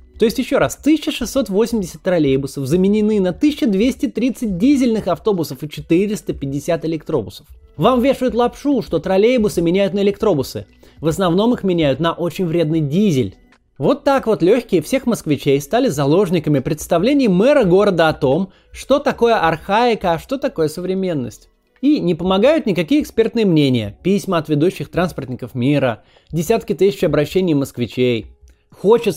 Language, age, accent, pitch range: Russian, 20-39, native, 140-230 Hz